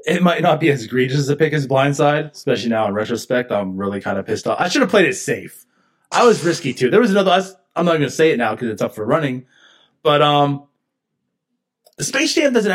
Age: 20-39